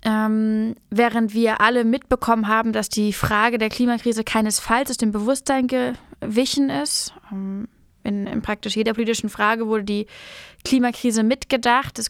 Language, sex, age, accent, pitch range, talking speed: German, female, 20-39, German, 215-240 Hz, 140 wpm